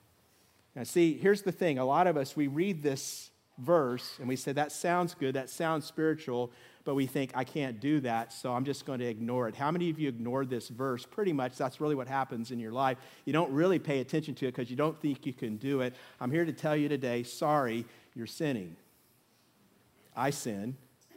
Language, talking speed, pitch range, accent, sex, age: English, 220 wpm, 130-175 Hz, American, male, 50-69